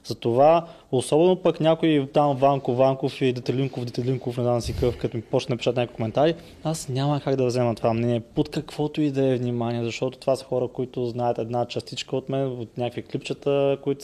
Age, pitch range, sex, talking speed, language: 20-39, 120-145 Hz, male, 200 wpm, Bulgarian